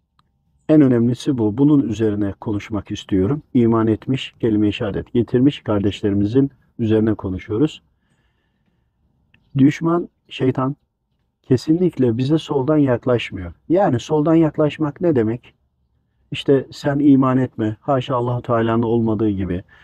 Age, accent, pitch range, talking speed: 50-69, native, 110-145 Hz, 105 wpm